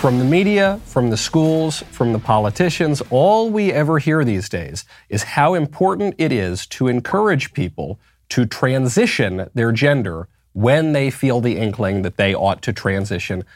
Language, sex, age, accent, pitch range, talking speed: English, male, 30-49, American, 105-150 Hz, 165 wpm